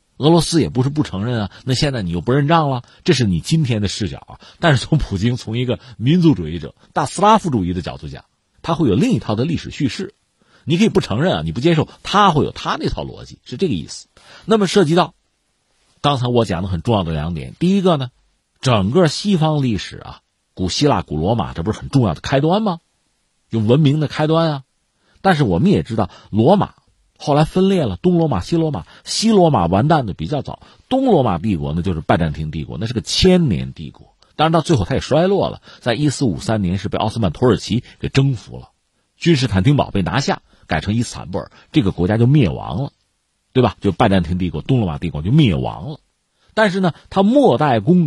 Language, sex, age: Chinese, male, 50-69